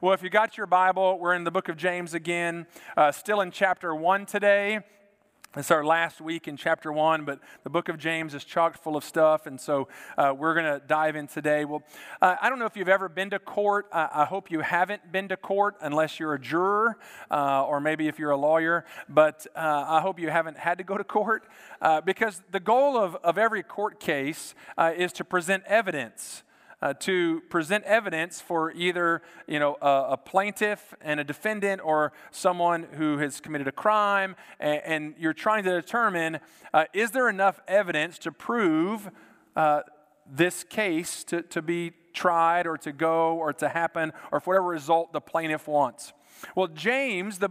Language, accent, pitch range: English, American, 155-195 Hz